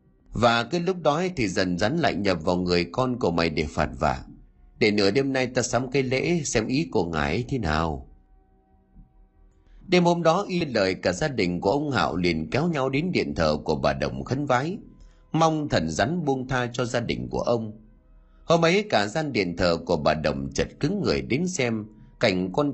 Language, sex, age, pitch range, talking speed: Vietnamese, male, 30-49, 90-150 Hz, 210 wpm